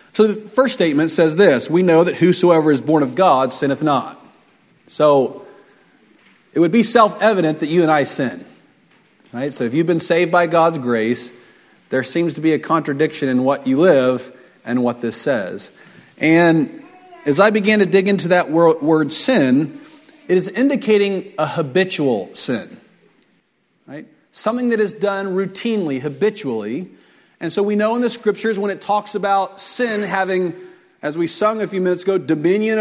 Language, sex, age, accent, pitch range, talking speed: English, male, 40-59, American, 165-230 Hz, 165 wpm